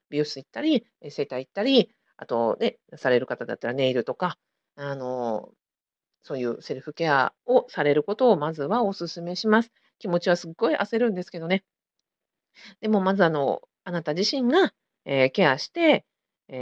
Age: 50-69